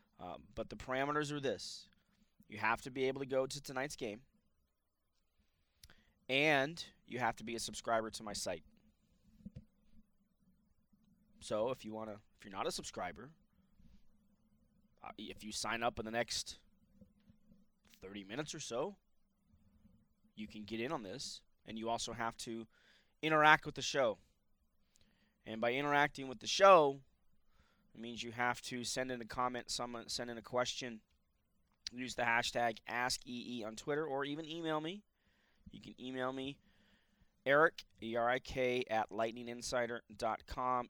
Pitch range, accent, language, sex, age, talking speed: 105-140 Hz, American, English, male, 20-39, 145 wpm